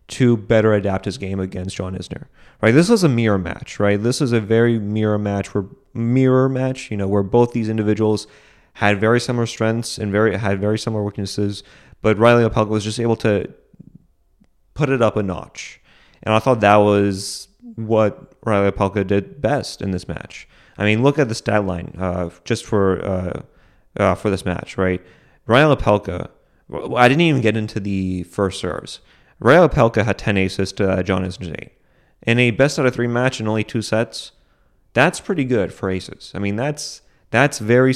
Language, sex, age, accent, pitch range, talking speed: English, male, 30-49, American, 100-120 Hz, 190 wpm